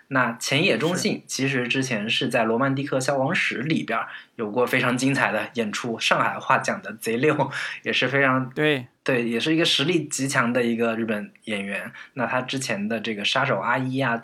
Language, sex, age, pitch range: Chinese, male, 20-39, 115-145 Hz